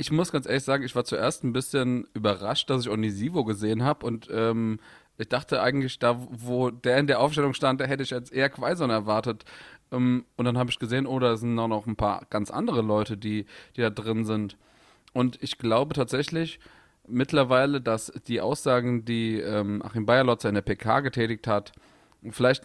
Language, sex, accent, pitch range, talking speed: German, male, German, 115-135 Hz, 195 wpm